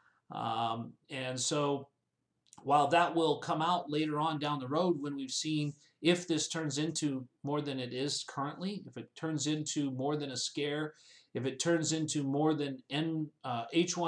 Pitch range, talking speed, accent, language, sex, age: 135-160 Hz, 175 wpm, American, English, male, 40-59